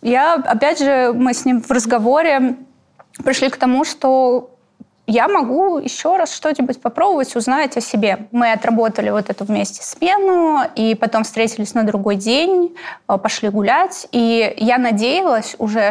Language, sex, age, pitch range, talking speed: Russian, female, 20-39, 215-270 Hz, 150 wpm